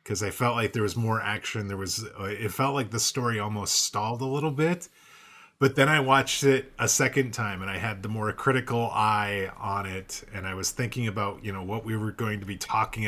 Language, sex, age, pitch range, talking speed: English, male, 30-49, 110-145 Hz, 235 wpm